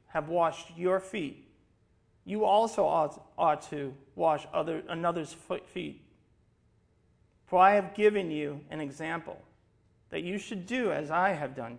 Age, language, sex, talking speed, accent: 40-59, English, male, 145 wpm, American